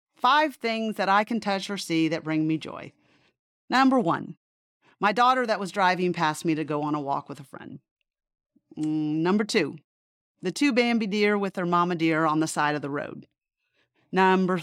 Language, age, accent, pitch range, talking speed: English, 40-59, American, 160-205 Hz, 190 wpm